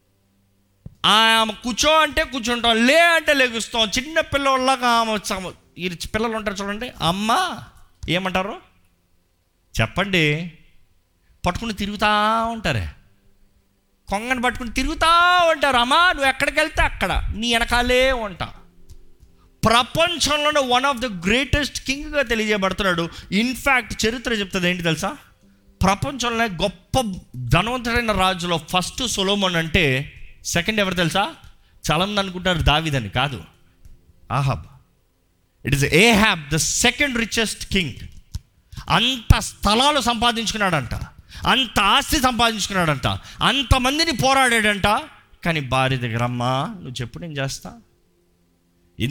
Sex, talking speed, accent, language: male, 105 wpm, native, Telugu